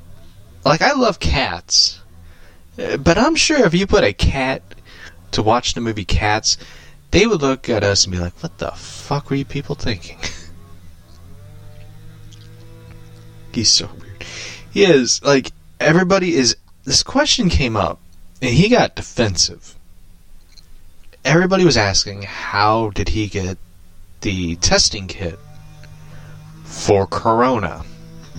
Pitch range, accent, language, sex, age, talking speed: 85-110 Hz, American, English, male, 20-39, 125 wpm